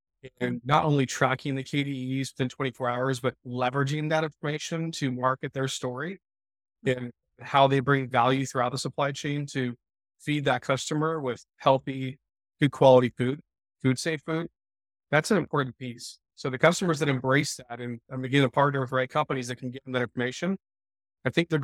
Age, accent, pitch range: 30-49, American, 125-145 Hz